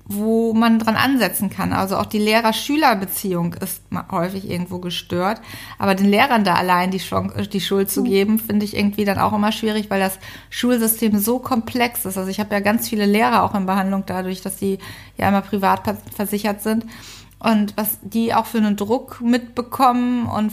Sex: female